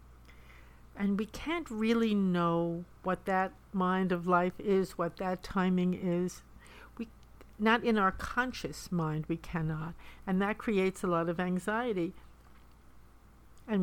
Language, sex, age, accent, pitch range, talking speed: English, female, 60-79, American, 170-220 Hz, 135 wpm